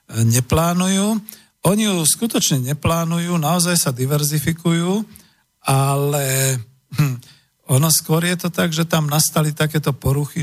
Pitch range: 120-150 Hz